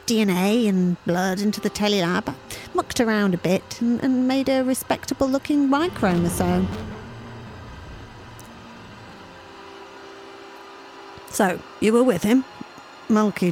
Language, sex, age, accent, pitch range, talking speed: English, female, 40-59, British, 180-260 Hz, 100 wpm